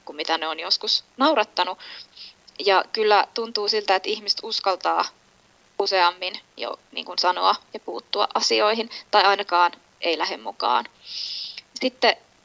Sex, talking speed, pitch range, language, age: female, 120 wpm, 185-245 Hz, Finnish, 20-39